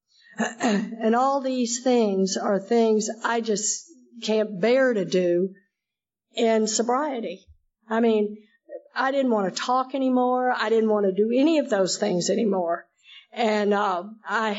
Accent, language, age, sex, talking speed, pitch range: American, English, 50-69, female, 145 wpm, 200-235 Hz